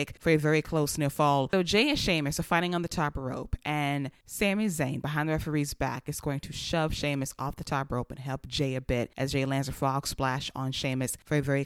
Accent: American